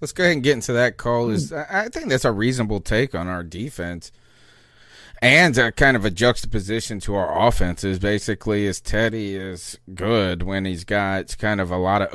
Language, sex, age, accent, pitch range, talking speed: English, male, 30-49, American, 95-115 Hz, 205 wpm